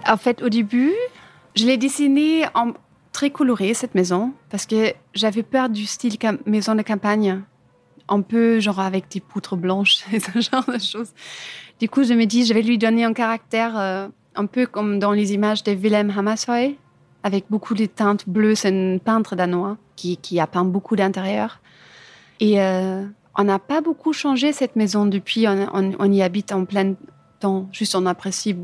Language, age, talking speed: French, 30-49, 185 wpm